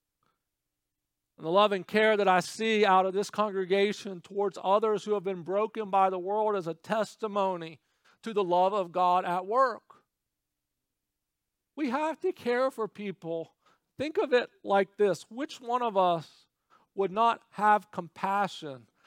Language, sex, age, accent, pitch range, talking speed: English, male, 50-69, American, 175-260 Hz, 155 wpm